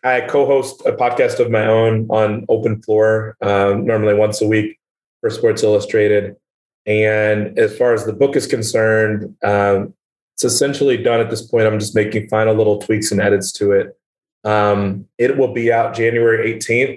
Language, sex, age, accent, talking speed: English, male, 30-49, American, 175 wpm